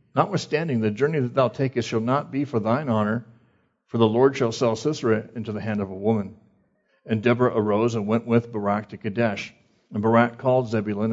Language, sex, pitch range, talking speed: English, male, 110-125 Hz, 200 wpm